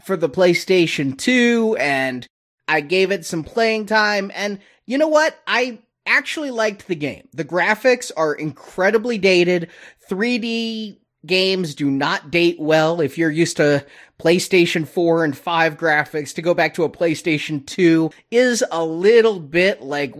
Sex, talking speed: male, 155 wpm